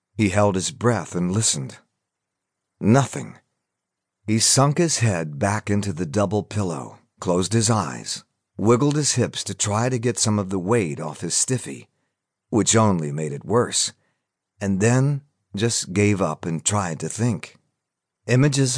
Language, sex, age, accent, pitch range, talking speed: English, male, 40-59, American, 90-115 Hz, 155 wpm